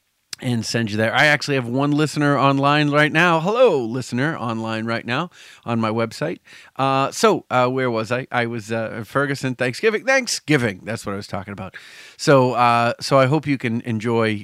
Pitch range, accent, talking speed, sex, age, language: 115-150 Hz, American, 190 wpm, male, 40-59, English